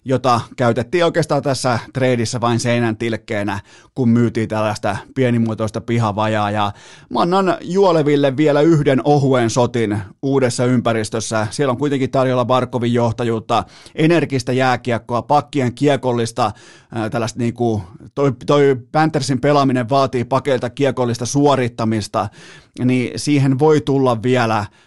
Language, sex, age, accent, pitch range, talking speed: Finnish, male, 30-49, native, 115-140 Hz, 115 wpm